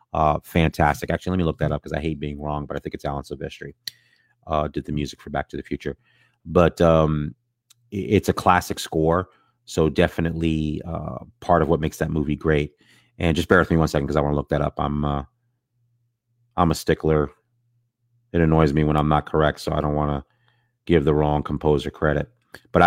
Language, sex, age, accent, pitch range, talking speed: English, male, 30-49, American, 75-90 Hz, 215 wpm